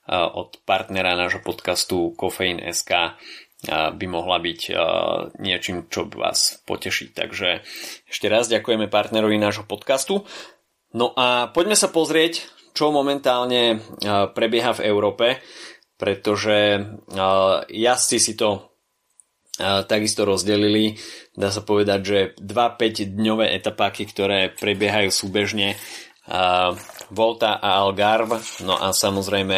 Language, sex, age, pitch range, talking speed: Slovak, male, 20-39, 100-120 Hz, 110 wpm